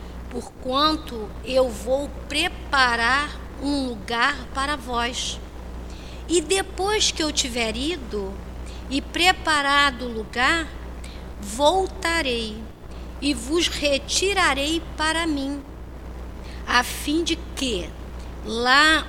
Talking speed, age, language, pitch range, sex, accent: 90 wpm, 50-69, Portuguese, 195-270 Hz, female, Brazilian